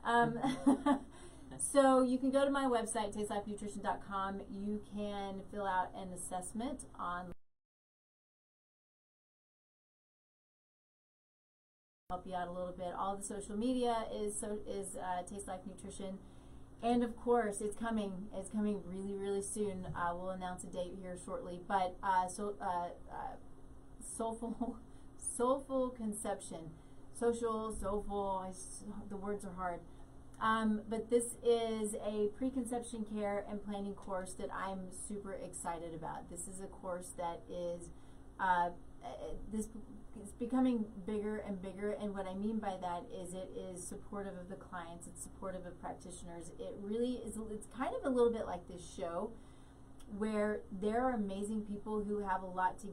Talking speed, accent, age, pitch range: 150 wpm, American, 30-49, 185-220 Hz